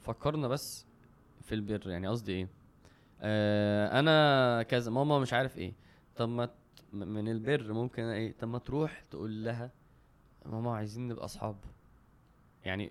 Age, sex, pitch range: 20-39, male, 115-150 Hz